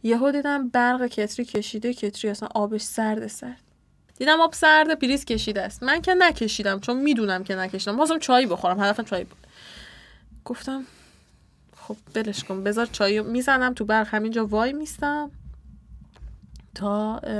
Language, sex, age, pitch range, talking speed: Persian, female, 10-29, 220-290 Hz, 150 wpm